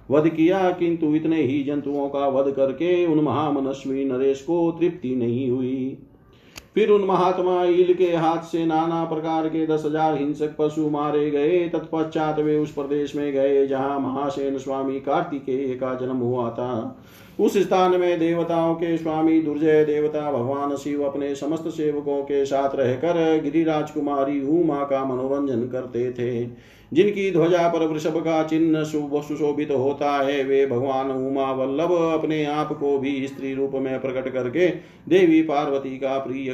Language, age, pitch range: Hindi, 50-69, 135-160 Hz